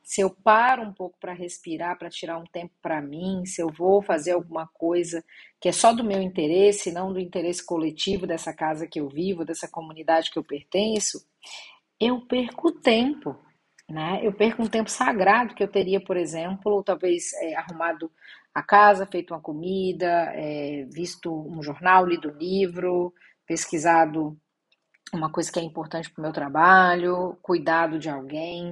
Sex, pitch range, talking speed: female, 165-215 Hz, 175 wpm